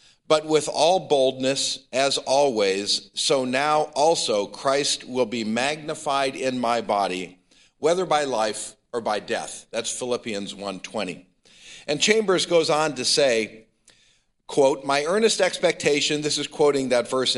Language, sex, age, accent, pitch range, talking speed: English, male, 50-69, American, 115-155 Hz, 140 wpm